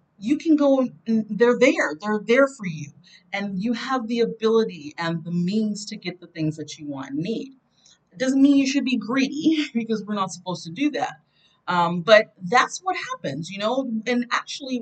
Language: English